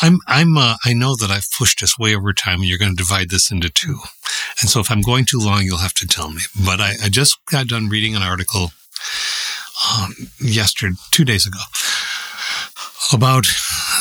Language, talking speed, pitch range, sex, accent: English, 200 wpm, 95-130 Hz, male, American